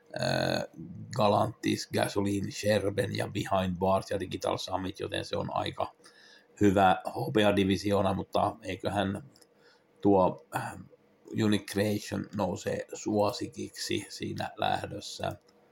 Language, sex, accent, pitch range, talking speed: Finnish, male, native, 95-105 Hz, 90 wpm